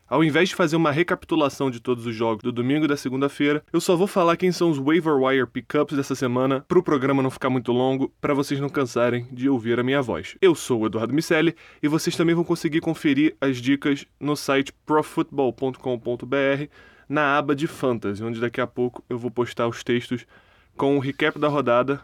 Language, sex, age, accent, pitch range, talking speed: Portuguese, male, 20-39, Brazilian, 125-150 Hz, 205 wpm